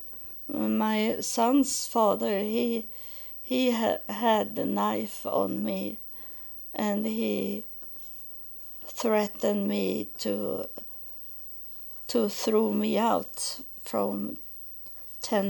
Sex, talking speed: female, 80 wpm